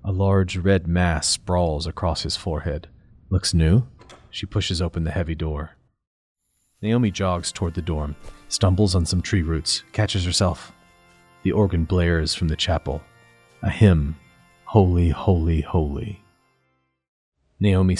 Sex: male